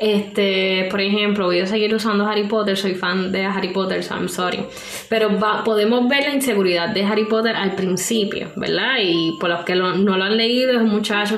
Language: Spanish